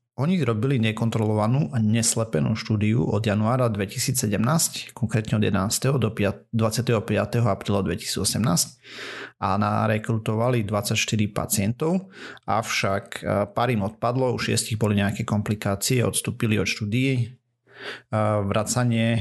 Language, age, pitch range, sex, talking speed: Slovak, 30-49, 105-125 Hz, male, 105 wpm